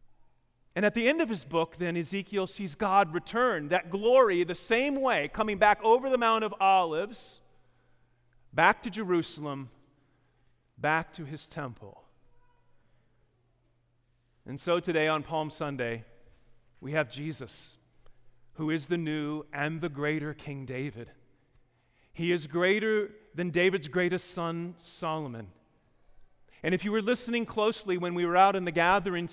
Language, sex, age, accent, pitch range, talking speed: English, male, 40-59, American, 150-215 Hz, 145 wpm